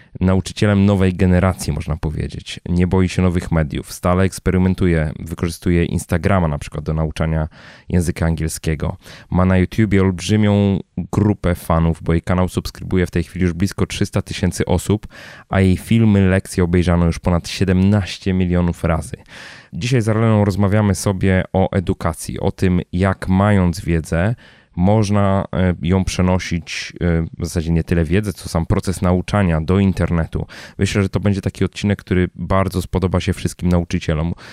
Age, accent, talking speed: 20-39, native, 150 wpm